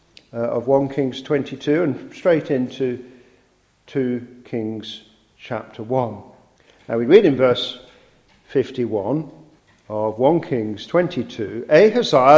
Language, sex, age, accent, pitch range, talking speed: English, male, 50-69, British, 115-145 Hz, 110 wpm